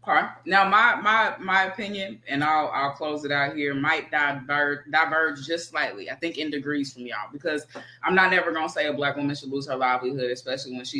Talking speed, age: 220 wpm, 20-39